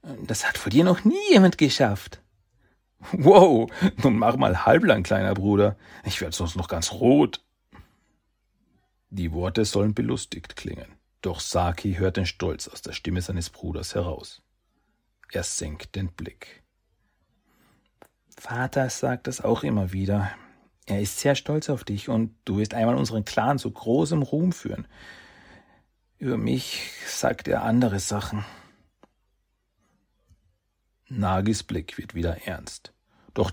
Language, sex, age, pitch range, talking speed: German, male, 40-59, 90-125 Hz, 135 wpm